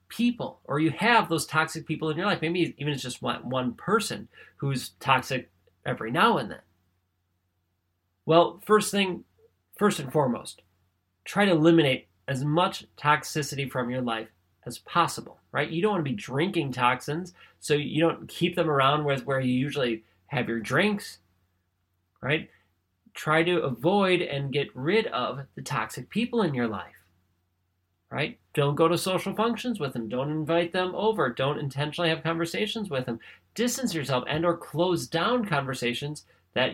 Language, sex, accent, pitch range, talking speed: English, male, American, 115-170 Hz, 165 wpm